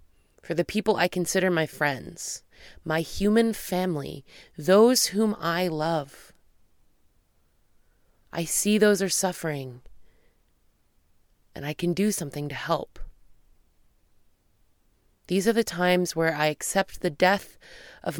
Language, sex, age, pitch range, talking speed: English, female, 20-39, 145-195 Hz, 120 wpm